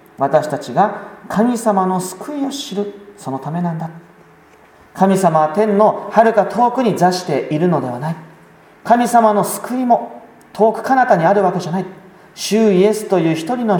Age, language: 40-59, Japanese